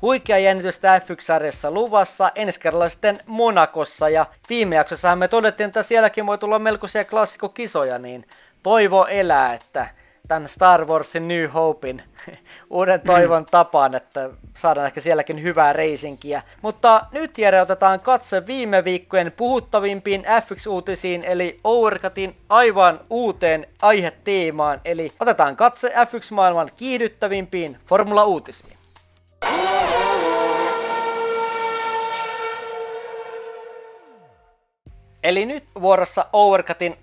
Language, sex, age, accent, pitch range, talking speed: Finnish, male, 30-49, native, 160-215 Hz, 100 wpm